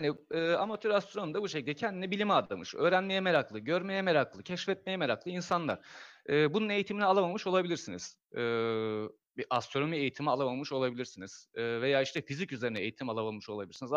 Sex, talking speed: male, 155 wpm